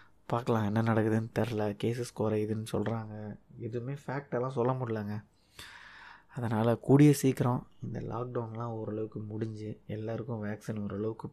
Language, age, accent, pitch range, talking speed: Tamil, 20-39, native, 105-120 Hz, 110 wpm